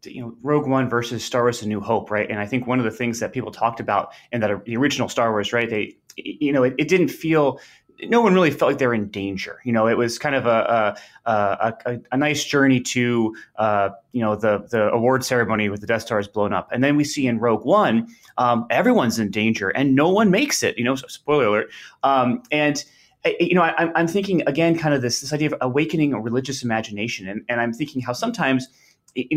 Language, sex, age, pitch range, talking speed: English, male, 30-49, 115-145 Hz, 240 wpm